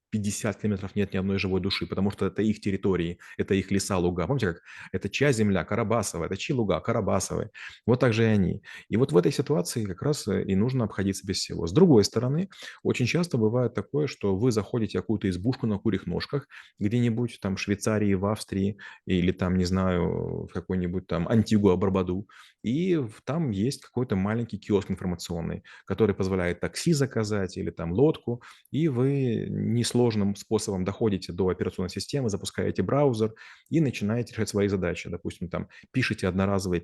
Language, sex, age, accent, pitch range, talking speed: Russian, male, 30-49, native, 95-120 Hz, 175 wpm